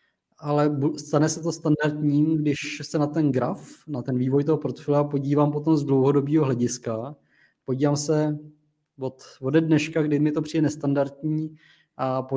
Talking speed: 155 wpm